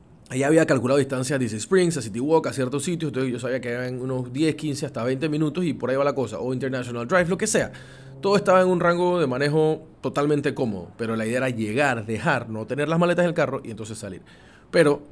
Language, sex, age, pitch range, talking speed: English, male, 30-49, 115-155 Hz, 245 wpm